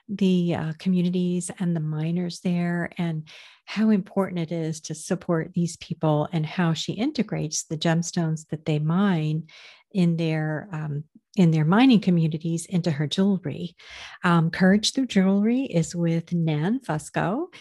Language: English